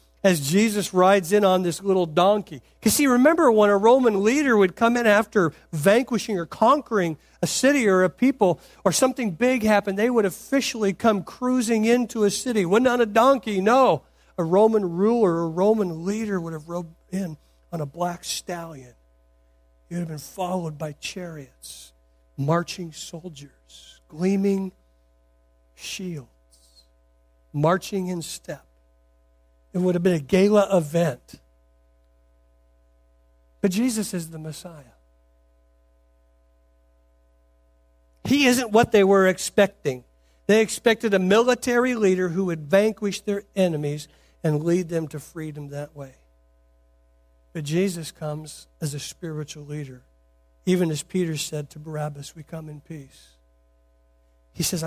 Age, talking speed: 50-69, 140 wpm